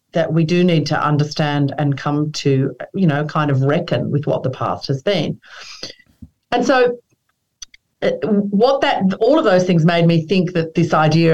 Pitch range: 150-190 Hz